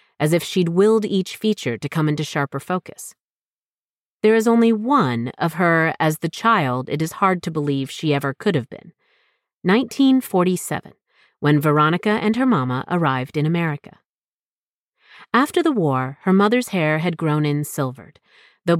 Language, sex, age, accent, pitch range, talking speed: English, female, 40-59, American, 145-195 Hz, 160 wpm